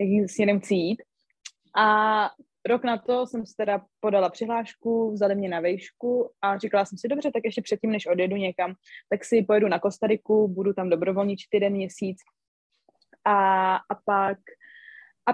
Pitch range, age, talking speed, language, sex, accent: 190-220 Hz, 20-39, 160 wpm, Czech, female, native